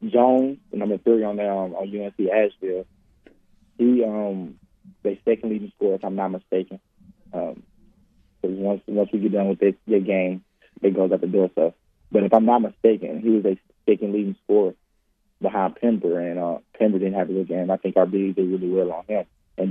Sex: male